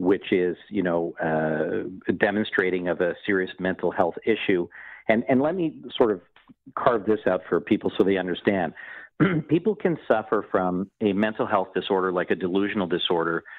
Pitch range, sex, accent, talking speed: 95-115 Hz, male, American, 170 wpm